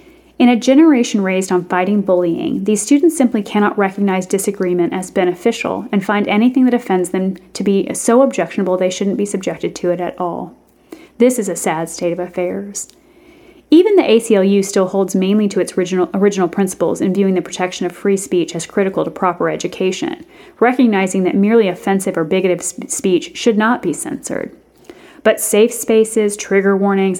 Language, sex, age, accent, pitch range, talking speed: English, female, 30-49, American, 185-230 Hz, 175 wpm